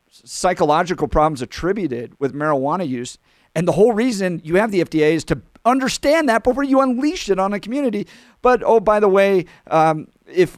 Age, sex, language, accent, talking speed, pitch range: 50-69, male, English, American, 180 wpm, 160-200 Hz